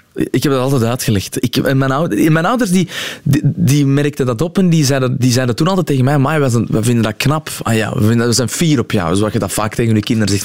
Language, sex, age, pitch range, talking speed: Dutch, male, 20-39, 110-140 Hz, 260 wpm